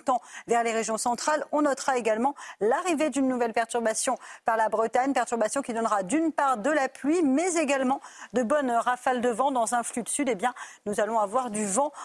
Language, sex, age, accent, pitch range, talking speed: French, female, 40-59, French, 230-280 Hz, 215 wpm